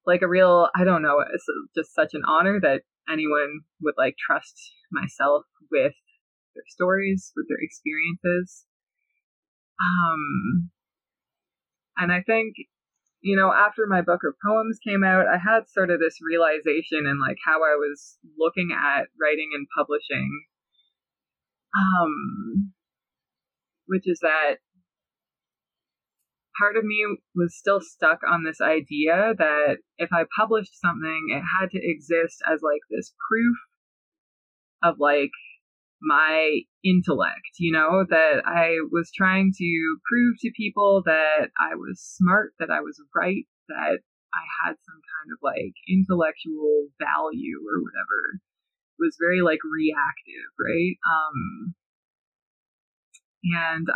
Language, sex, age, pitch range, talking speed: English, female, 20-39, 160-205 Hz, 130 wpm